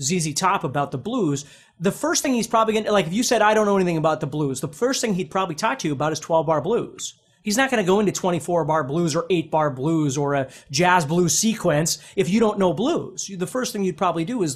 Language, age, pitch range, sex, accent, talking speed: English, 30-49, 155-215 Hz, male, American, 270 wpm